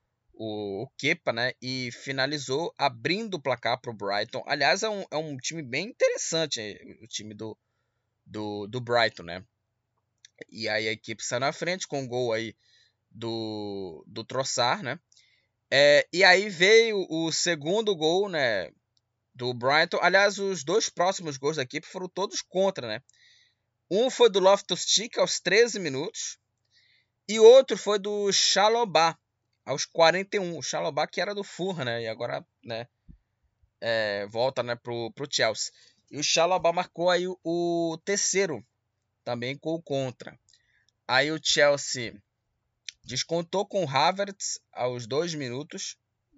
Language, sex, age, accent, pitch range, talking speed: Portuguese, male, 20-39, Brazilian, 115-180 Hz, 150 wpm